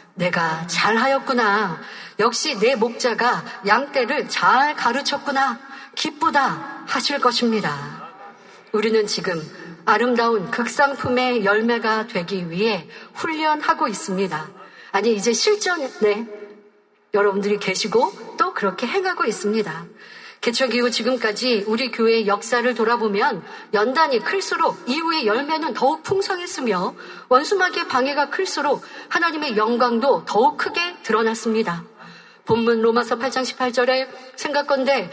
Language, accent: Korean, native